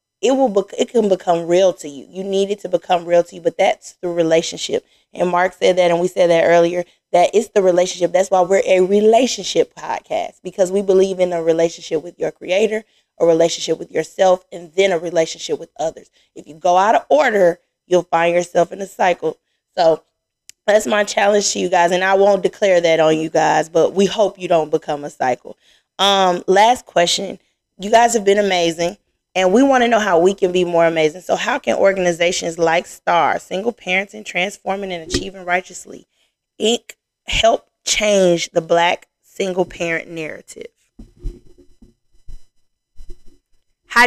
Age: 20-39